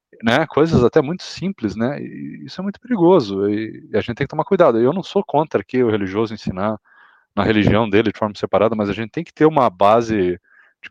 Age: 20-39